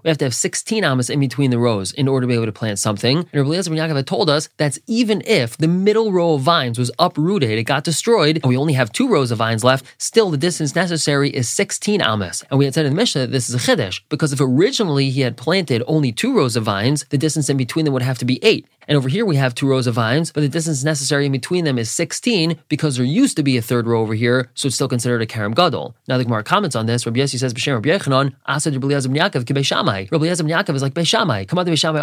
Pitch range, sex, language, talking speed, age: 125-160 Hz, male, English, 260 wpm, 20-39